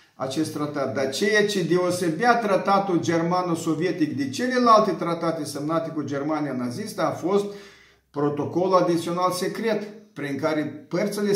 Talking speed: 120 wpm